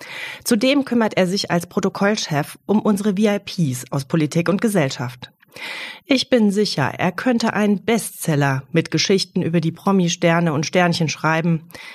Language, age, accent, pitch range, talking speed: German, 30-49, German, 160-220 Hz, 140 wpm